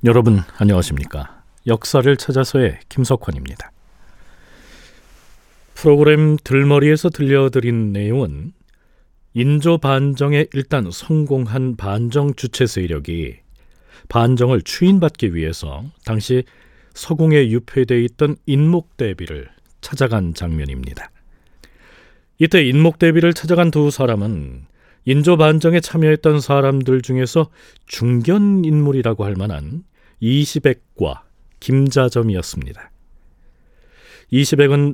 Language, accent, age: Korean, native, 40-59